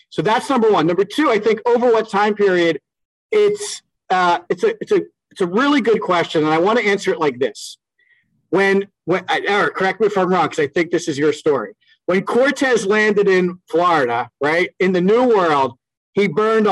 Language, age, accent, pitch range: English, 40-59, American, 175-245 Hz